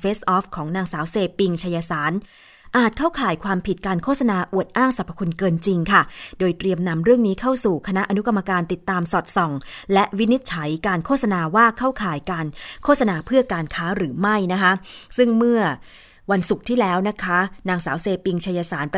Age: 20-39